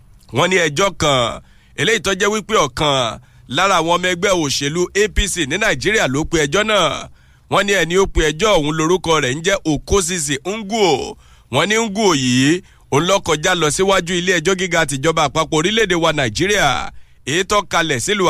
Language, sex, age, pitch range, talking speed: English, male, 50-69, 150-195 Hz, 145 wpm